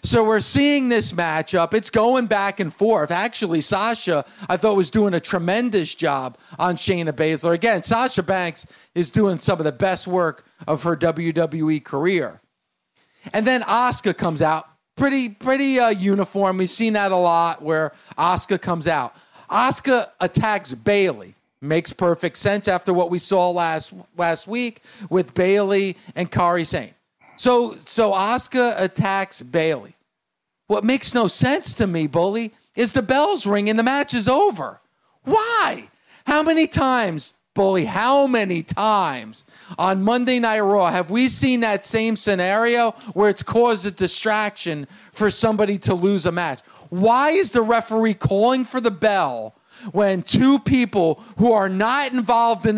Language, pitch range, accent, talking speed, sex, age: English, 175-230 Hz, American, 155 wpm, male, 40-59